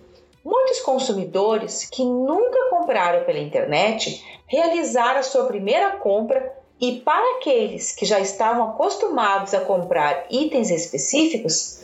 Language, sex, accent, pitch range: Portuguese, female, Brazilian, 240-350 Hz